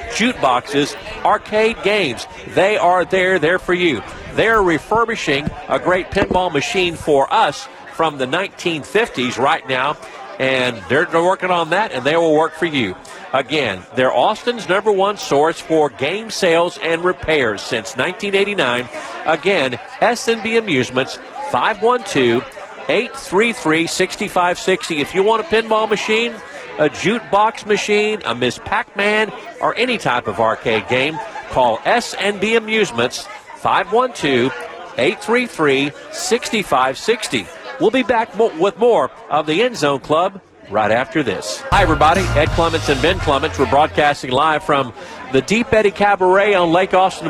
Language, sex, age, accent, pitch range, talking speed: English, male, 50-69, American, 155-215 Hz, 130 wpm